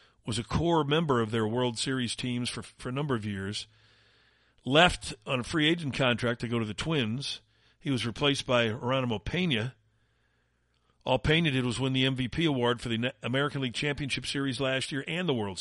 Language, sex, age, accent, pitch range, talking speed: English, male, 50-69, American, 110-145 Hz, 195 wpm